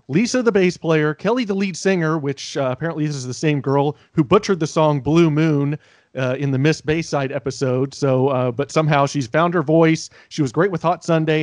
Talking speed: 220 wpm